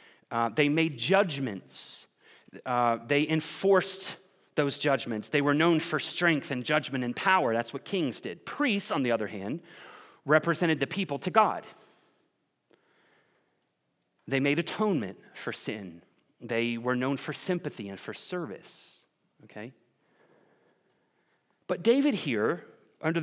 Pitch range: 150-205 Hz